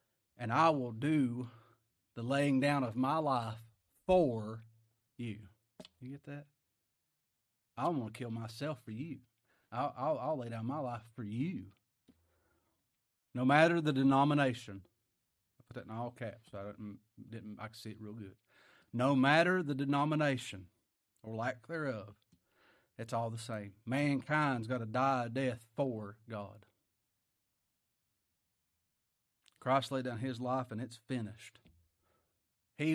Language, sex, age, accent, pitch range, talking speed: English, male, 40-59, American, 110-150 Hz, 145 wpm